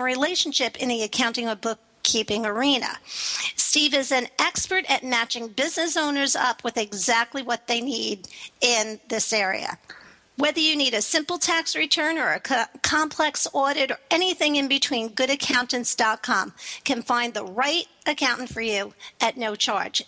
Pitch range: 240-305 Hz